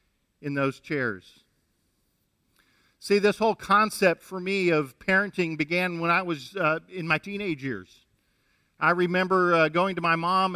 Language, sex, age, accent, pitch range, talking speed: English, male, 50-69, American, 155-225 Hz, 155 wpm